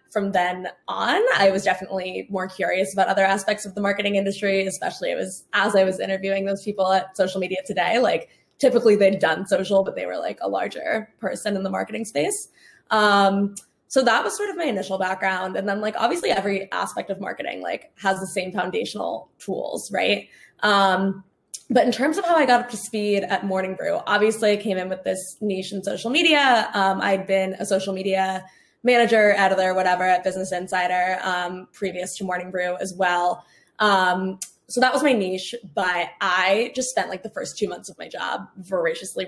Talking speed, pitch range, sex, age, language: 200 wpm, 185-220 Hz, female, 20-39, English